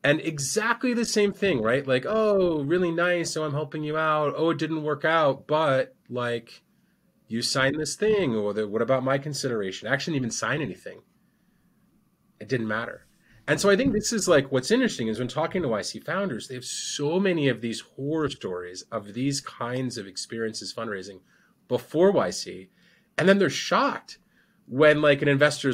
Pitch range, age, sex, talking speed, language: 115-185 Hz, 30-49, male, 190 wpm, English